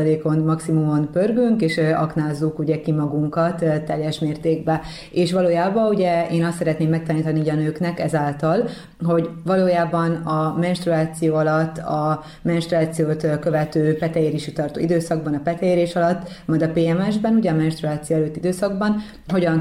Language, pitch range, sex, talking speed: Hungarian, 155-170 Hz, female, 130 wpm